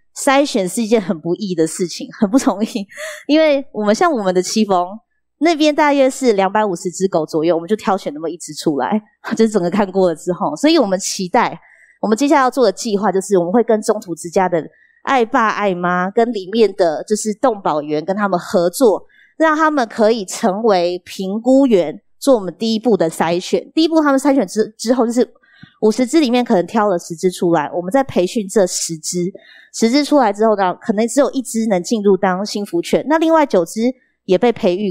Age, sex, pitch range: 20-39, female, 185-240 Hz